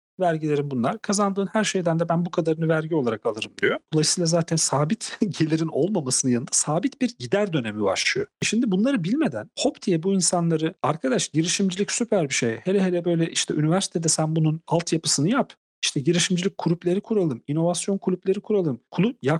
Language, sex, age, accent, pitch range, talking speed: Turkish, male, 40-59, native, 150-200 Hz, 165 wpm